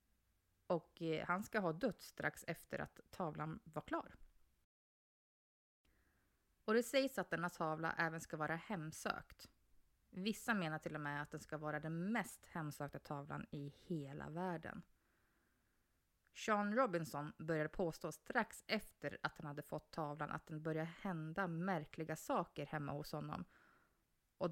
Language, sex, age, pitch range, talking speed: Swedish, female, 20-39, 155-195 Hz, 140 wpm